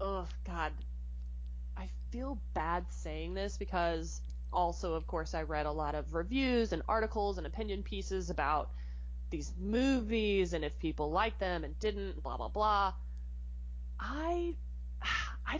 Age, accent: 20-39, American